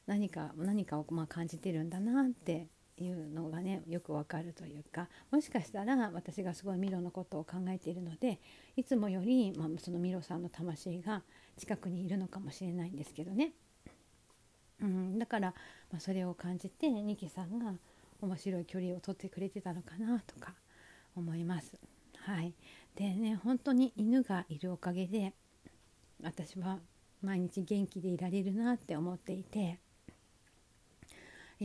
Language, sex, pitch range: Japanese, female, 170-210 Hz